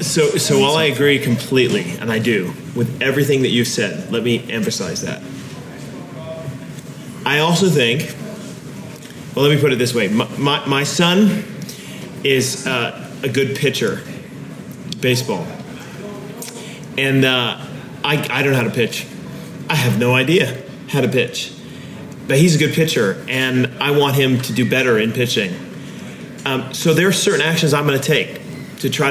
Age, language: 30-49, English